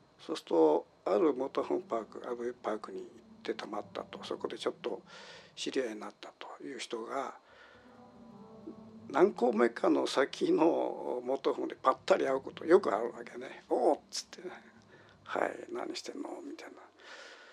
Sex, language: male, Japanese